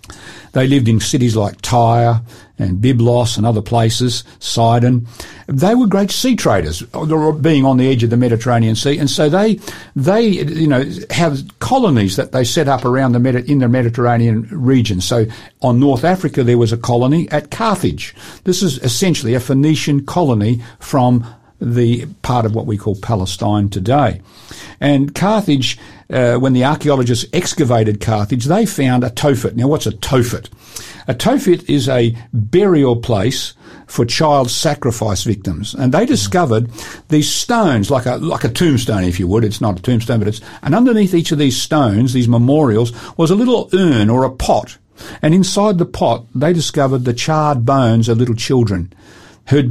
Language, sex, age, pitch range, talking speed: English, male, 50-69, 115-145 Hz, 170 wpm